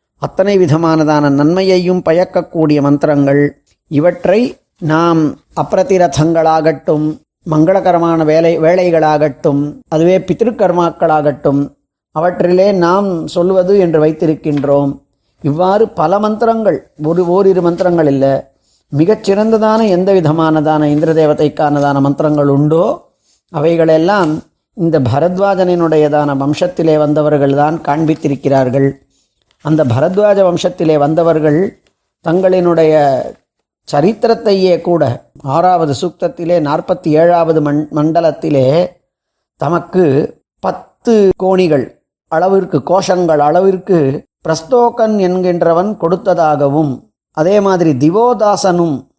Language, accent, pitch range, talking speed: Tamil, native, 150-185 Hz, 75 wpm